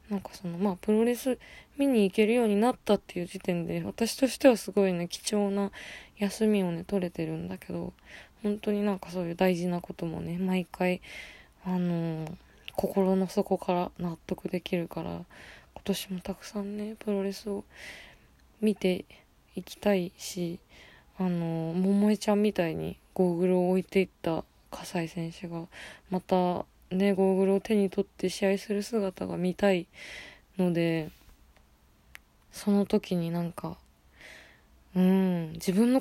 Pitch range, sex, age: 175-205 Hz, female, 20-39